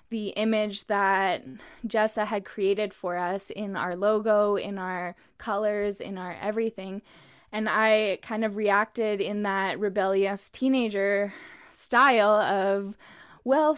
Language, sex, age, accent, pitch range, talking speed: English, female, 10-29, American, 200-265 Hz, 125 wpm